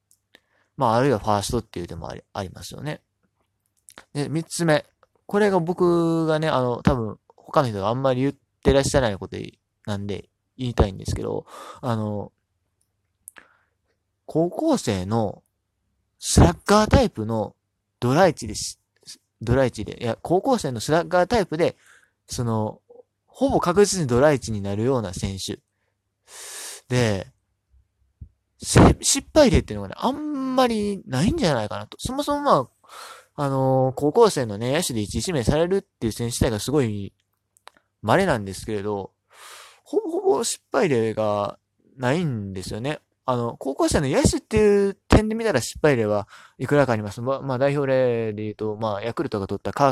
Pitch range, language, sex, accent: 100-150 Hz, Japanese, male, native